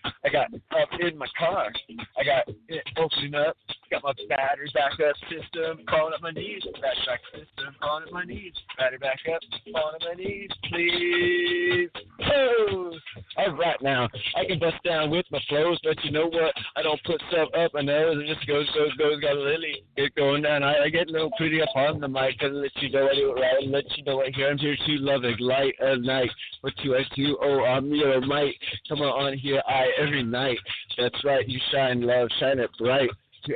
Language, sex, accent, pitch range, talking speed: English, male, American, 125-145 Hz, 225 wpm